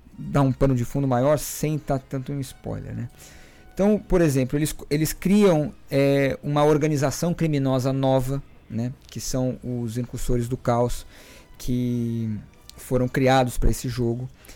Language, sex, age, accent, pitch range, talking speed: Portuguese, male, 20-39, Brazilian, 120-150 Hz, 155 wpm